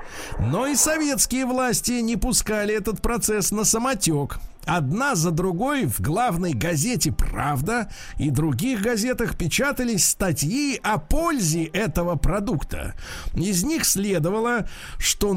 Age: 50-69